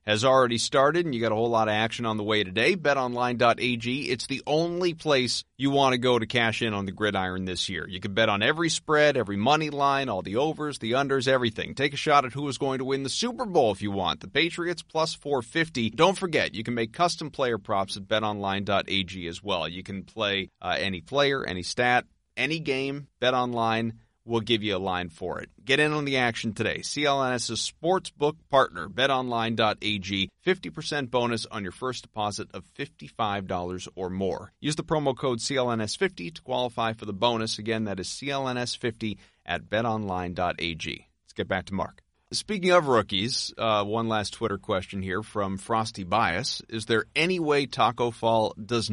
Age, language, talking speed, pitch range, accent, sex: 30-49, English, 190 wpm, 105-140 Hz, American, male